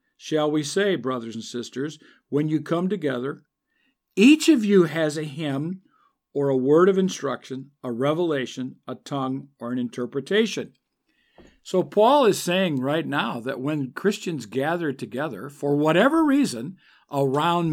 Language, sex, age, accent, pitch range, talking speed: English, male, 50-69, American, 140-190 Hz, 145 wpm